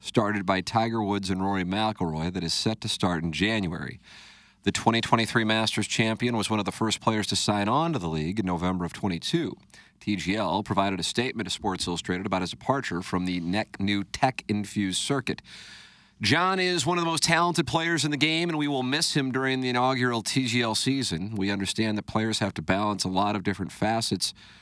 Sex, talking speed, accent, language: male, 200 wpm, American, English